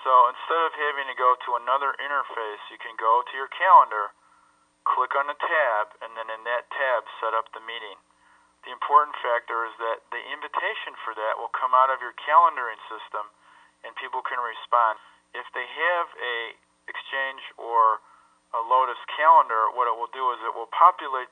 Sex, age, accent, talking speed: male, 40-59, American, 185 wpm